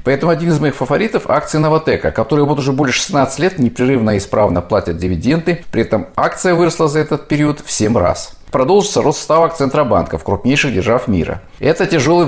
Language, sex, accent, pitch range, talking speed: Russian, male, native, 110-155 Hz, 185 wpm